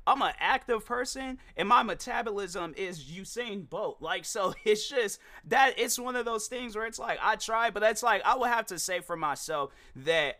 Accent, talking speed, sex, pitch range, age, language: American, 210 wpm, male, 135-195 Hz, 20-39, English